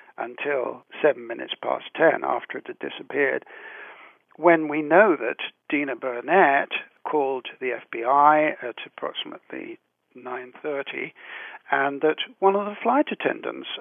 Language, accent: English, British